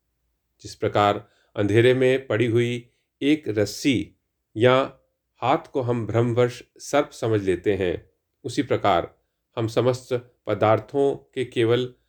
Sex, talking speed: male, 120 wpm